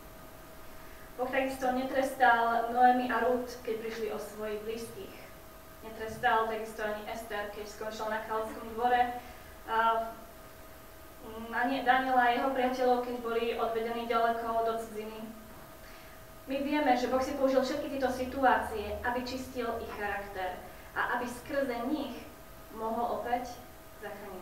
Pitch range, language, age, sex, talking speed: 215-250 Hz, Slovak, 20-39, female, 125 wpm